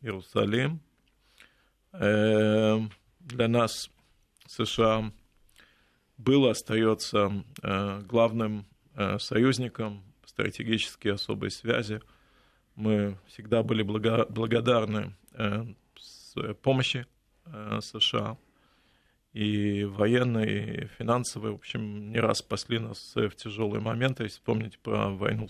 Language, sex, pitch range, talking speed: Russian, male, 110-130 Hz, 80 wpm